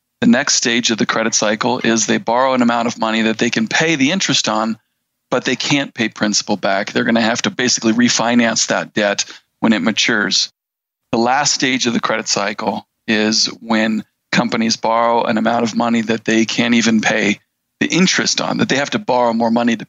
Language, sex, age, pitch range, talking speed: English, male, 40-59, 115-145 Hz, 210 wpm